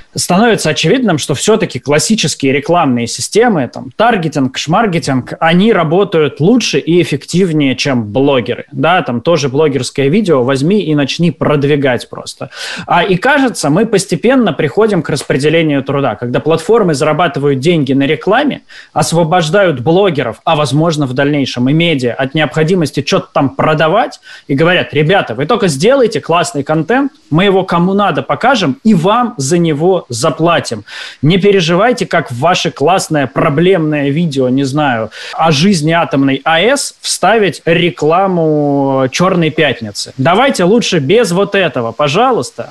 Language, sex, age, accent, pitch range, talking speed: Russian, male, 20-39, native, 145-185 Hz, 135 wpm